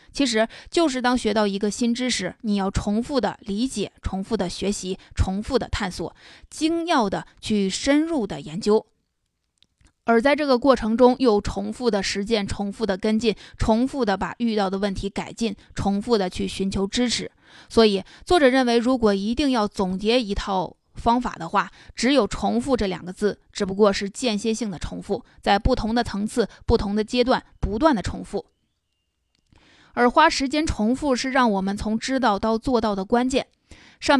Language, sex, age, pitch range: Chinese, female, 20-39, 200-245 Hz